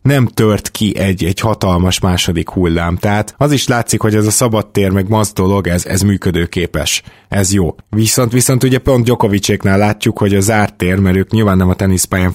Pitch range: 95-110 Hz